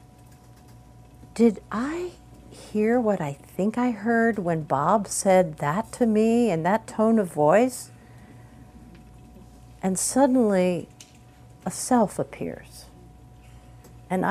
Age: 50-69